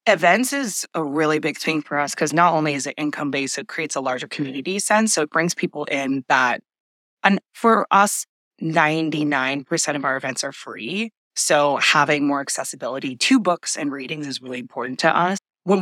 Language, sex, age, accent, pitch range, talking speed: English, female, 20-39, American, 150-190 Hz, 190 wpm